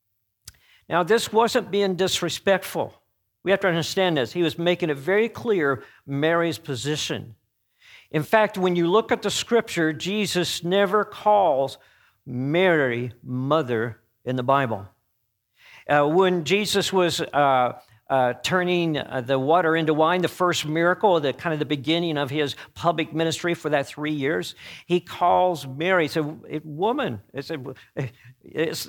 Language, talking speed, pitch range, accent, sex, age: English, 145 wpm, 130-175 Hz, American, male, 50-69